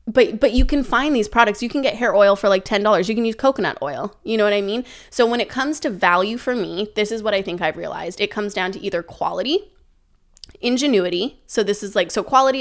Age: 20-39